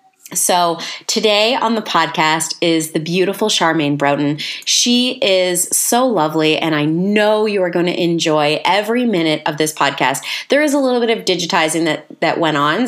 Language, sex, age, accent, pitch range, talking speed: English, female, 30-49, American, 160-240 Hz, 175 wpm